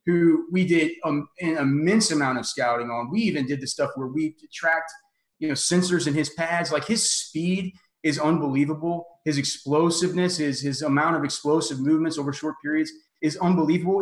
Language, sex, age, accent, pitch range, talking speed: English, male, 30-49, American, 145-185 Hz, 165 wpm